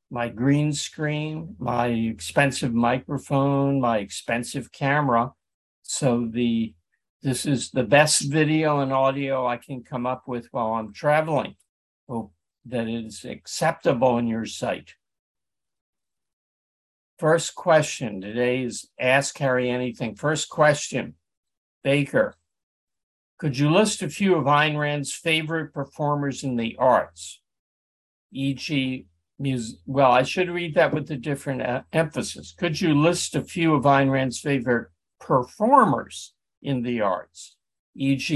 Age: 60-79